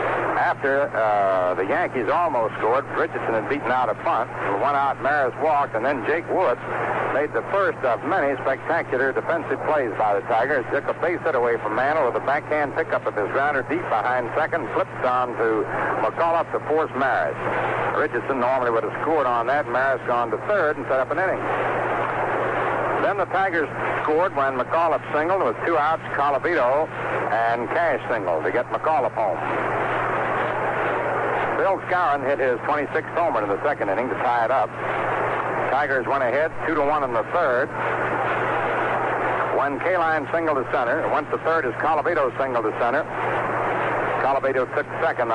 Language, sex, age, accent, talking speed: English, male, 60-79, American, 170 wpm